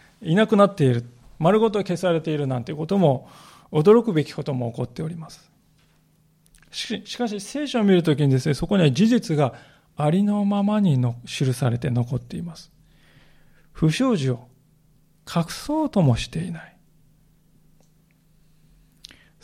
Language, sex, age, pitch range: Japanese, male, 40-59, 150-200 Hz